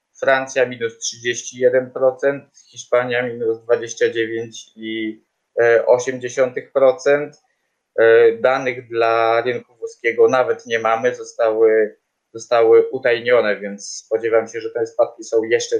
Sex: male